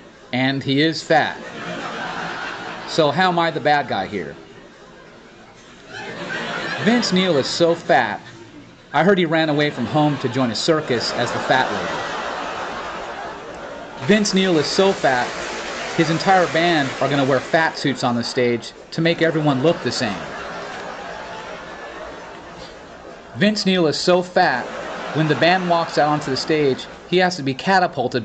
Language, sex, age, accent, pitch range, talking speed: English, male, 30-49, American, 140-185 Hz, 155 wpm